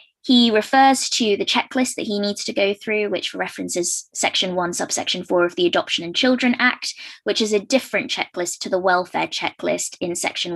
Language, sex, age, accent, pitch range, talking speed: English, female, 20-39, British, 185-245 Hz, 195 wpm